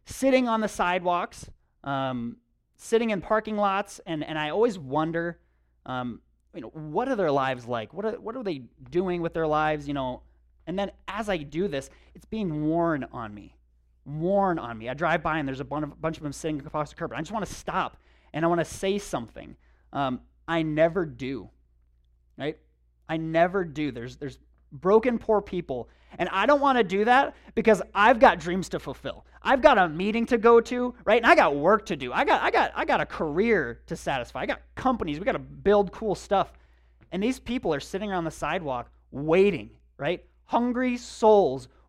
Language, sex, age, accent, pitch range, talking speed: English, male, 30-49, American, 125-195 Hz, 200 wpm